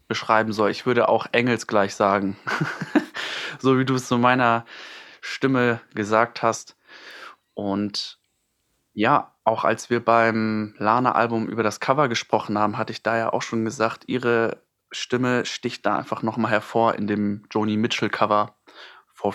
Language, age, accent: German, 20-39, German